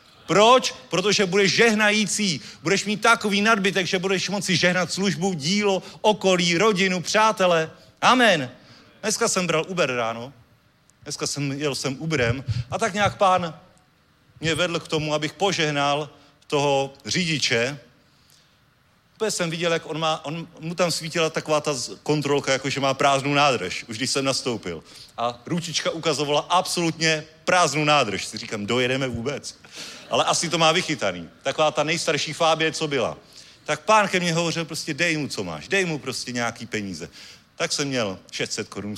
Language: Czech